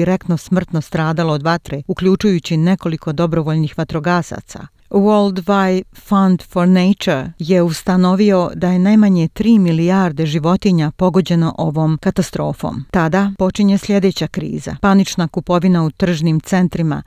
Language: Croatian